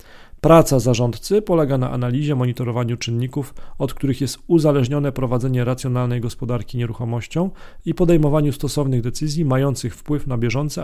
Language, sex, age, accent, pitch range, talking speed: Polish, male, 40-59, native, 125-145 Hz, 125 wpm